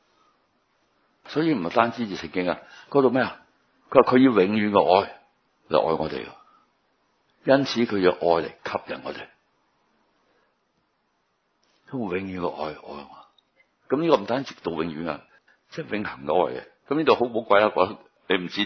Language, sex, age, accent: Chinese, male, 60-79, native